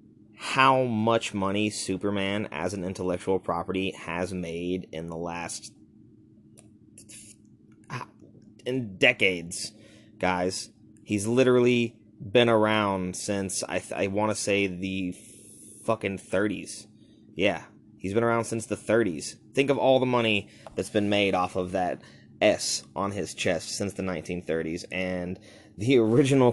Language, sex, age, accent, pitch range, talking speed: English, male, 20-39, American, 95-110 Hz, 130 wpm